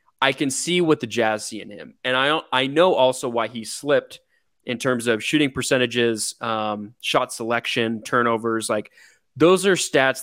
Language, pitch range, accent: English, 115-130 Hz, American